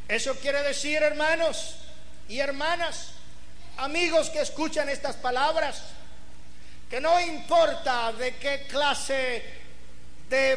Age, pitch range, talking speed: 50-69, 230-300 Hz, 100 wpm